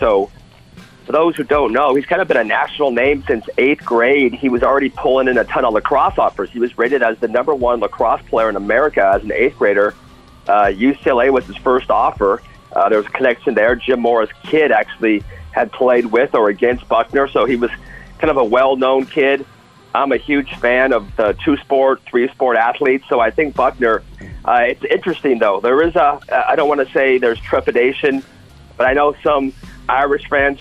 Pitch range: 120-145 Hz